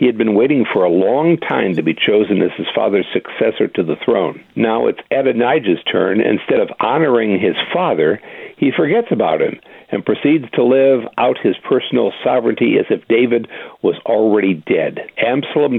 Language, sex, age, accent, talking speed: English, male, 60-79, American, 175 wpm